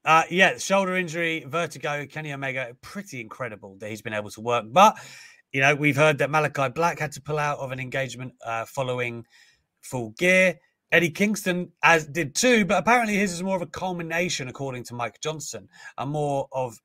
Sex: male